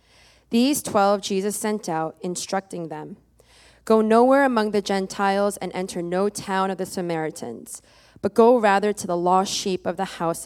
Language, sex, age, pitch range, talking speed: English, female, 20-39, 180-220 Hz, 165 wpm